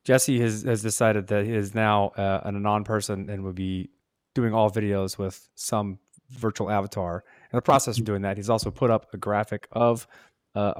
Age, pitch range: 30-49, 95-115 Hz